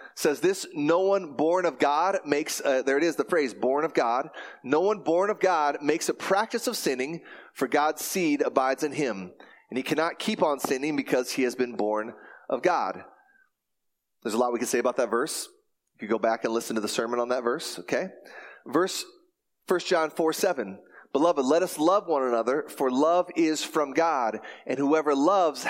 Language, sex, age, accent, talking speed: English, male, 30-49, American, 200 wpm